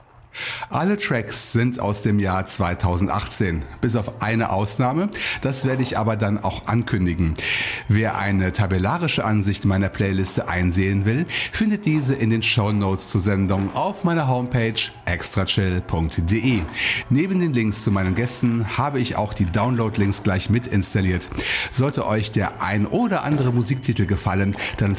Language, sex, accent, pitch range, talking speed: German, male, German, 100-130 Hz, 145 wpm